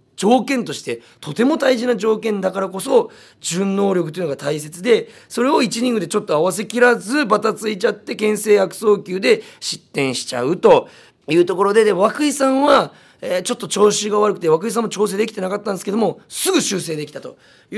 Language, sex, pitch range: Japanese, male, 155-225 Hz